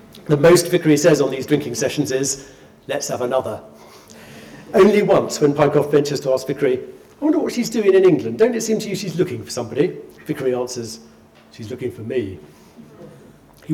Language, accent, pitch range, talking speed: English, British, 120-150 Hz, 190 wpm